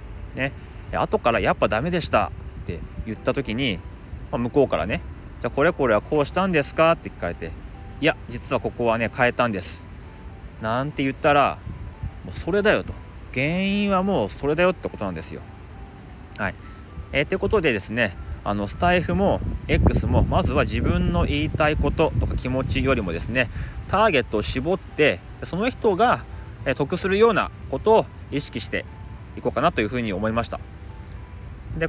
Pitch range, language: 95-160 Hz, Japanese